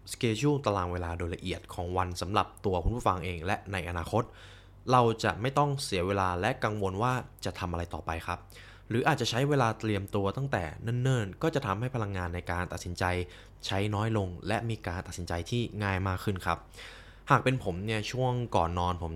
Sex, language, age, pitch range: male, Thai, 20-39, 90-115 Hz